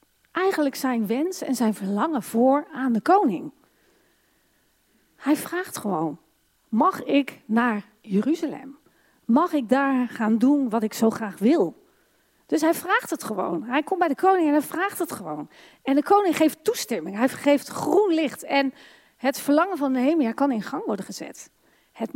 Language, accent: Dutch, Dutch